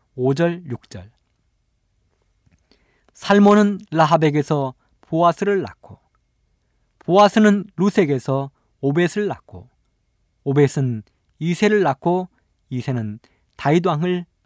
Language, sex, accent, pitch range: Korean, male, native, 115-185 Hz